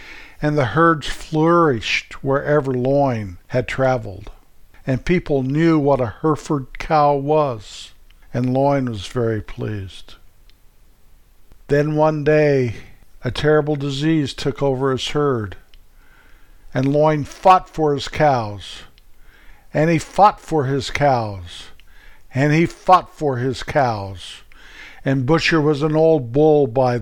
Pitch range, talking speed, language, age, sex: 115-145 Hz, 125 wpm, English, 50-69, male